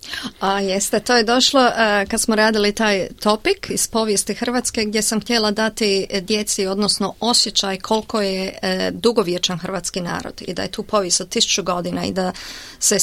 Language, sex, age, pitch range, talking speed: Croatian, female, 30-49, 195-250 Hz, 175 wpm